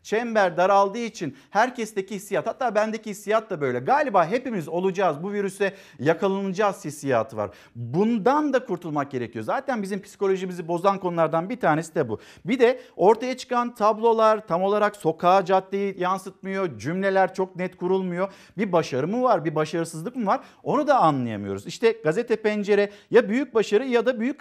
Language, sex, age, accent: Turkish, male, 50-69, native